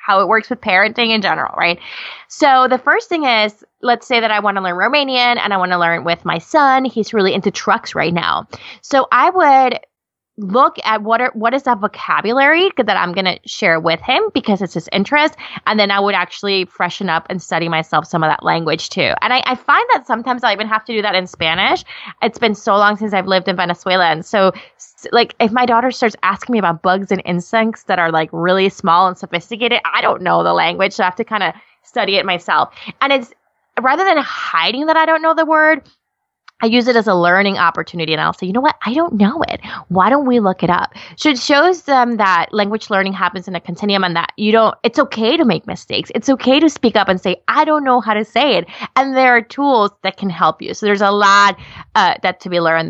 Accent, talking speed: American, 245 wpm